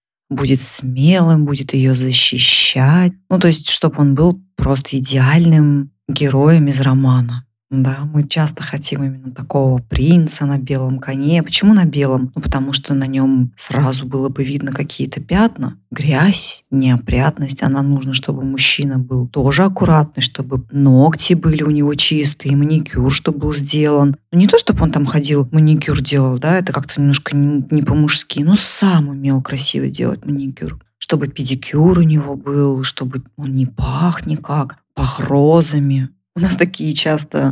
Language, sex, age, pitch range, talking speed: Russian, female, 20-39, 135-155 Hz, 155 wpm